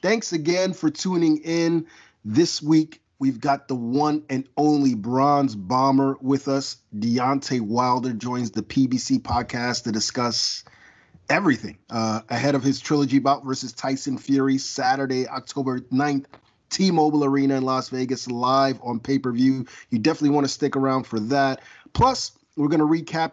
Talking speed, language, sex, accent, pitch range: 150 wpm, English, male, American, 125-150 Hz